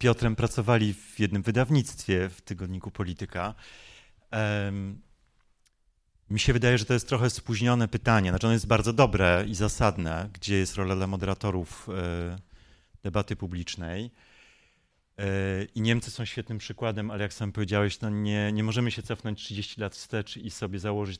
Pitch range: 95-115 Hz